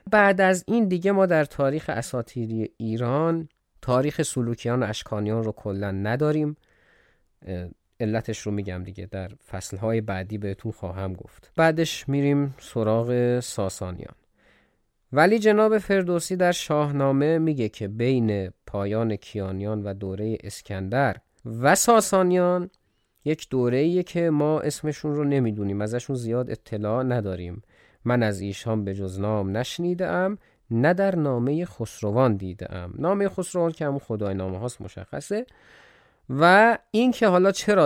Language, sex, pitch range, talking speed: Persian, male, 105-160 Hz, 130 wpm